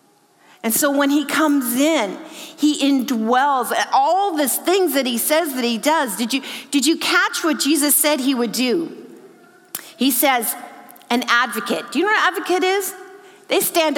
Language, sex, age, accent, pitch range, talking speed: English, female, 40-59, American, 225-320 Hz, 175 wpm